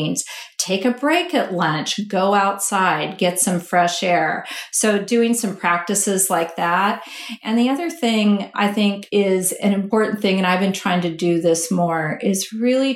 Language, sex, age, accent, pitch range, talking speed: English, female, 40-59, American, 175-225 Hz, 170 wpm